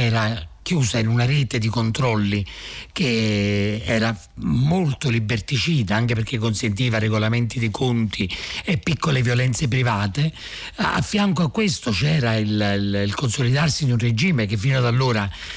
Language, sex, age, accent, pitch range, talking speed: Italian, male, 50-69, native, 110-155 Hz, 145 wpm